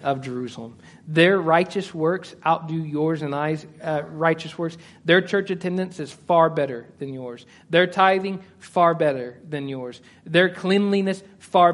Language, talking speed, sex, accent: English, 150 wpm, male, American